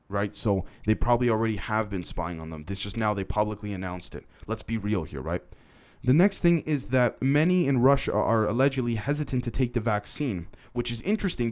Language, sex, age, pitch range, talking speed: English, male, 20-39, 100-125 Hz, 210 wpm